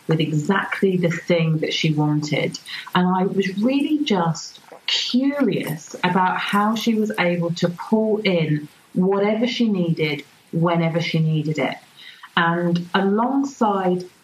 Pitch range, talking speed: 160-195 Hz, 125 wpm